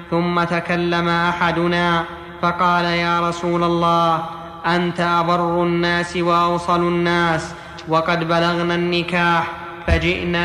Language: Arabic